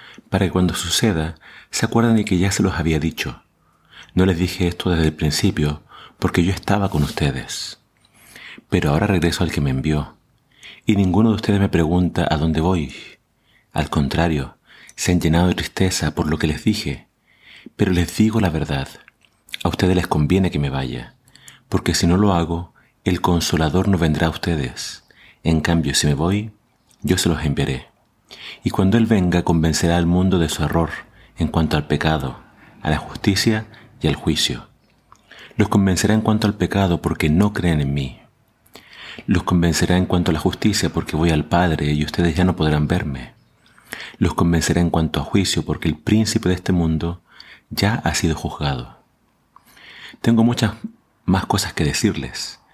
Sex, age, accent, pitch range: male, 40-59, Argentinian, 80-95 Hz